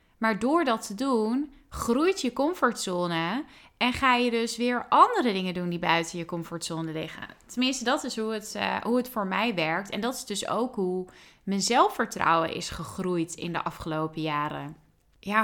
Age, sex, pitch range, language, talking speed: 20-39, female, 195-255 Hz, Dutch, 175 wpm